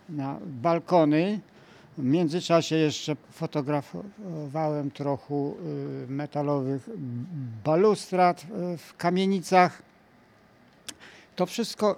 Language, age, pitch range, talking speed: Polish, 60-79, 150-185 Hz, 65 wpm